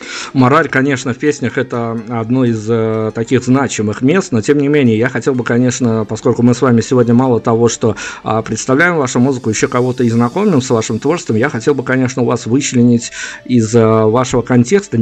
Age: 50-69